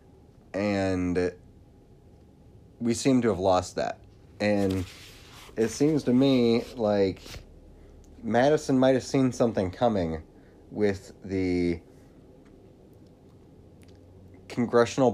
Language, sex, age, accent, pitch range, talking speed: English, male, 30-49, American, 90-115 Hz, 85 wpm